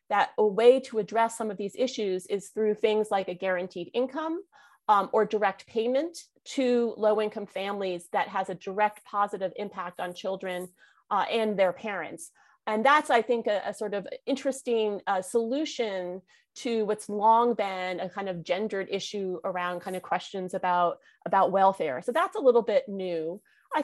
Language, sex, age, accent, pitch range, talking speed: English, female, 30-49, American, 190-255 Hz, 175 wpm